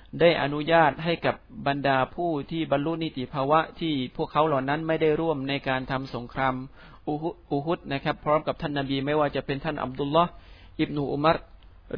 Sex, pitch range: male, 130-155 Hz